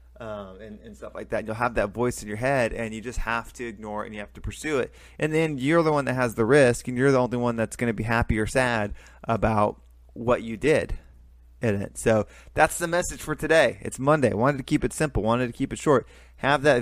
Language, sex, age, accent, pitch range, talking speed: English, male, 20-39, American, 105-130 Hz, 255 wpm